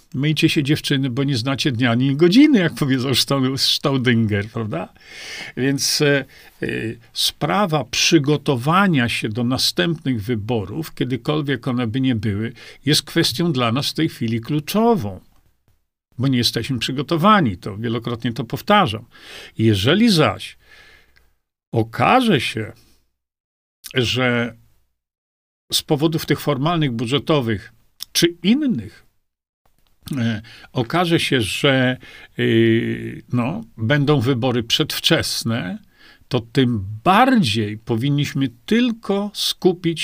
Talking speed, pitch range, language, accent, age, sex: 100 wpm, 115-165 Hz, Polish, native, 50-69, male